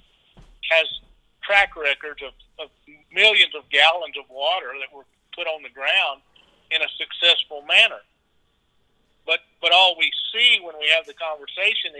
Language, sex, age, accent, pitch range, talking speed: English, male, 50-69, American, 145-180 Hz, 150 wpm